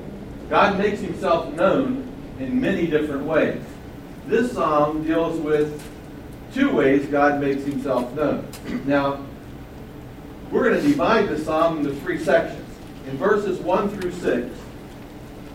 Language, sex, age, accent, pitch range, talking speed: English, male, 60-79, American, 130-170 Hz, 125 wpm